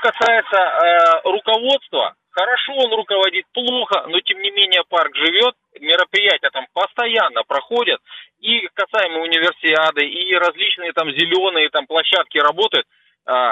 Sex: male